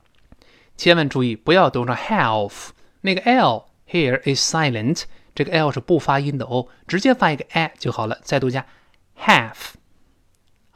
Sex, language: male, Chinese